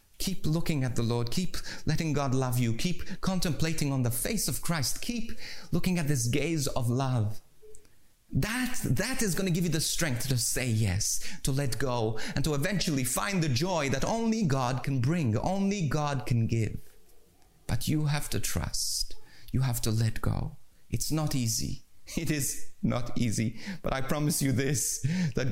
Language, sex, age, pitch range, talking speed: English, male, 30-49, 115-150 Hz, 180 wpm